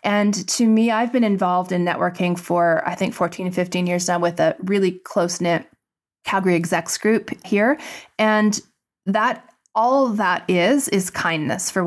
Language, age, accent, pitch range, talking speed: English, 30-49, American, 175-220 Hz, 170 wpm